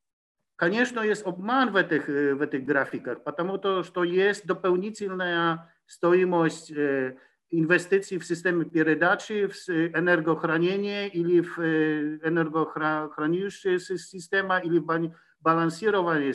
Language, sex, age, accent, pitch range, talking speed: Ukrainian, male, 50-69, Polish, 155-190 Hz, 90 wpm